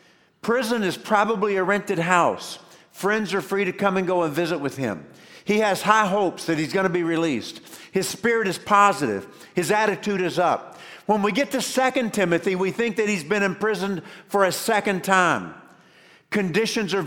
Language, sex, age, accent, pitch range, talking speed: English, male, 50-69, American, 175-210 Hz, 185 wpm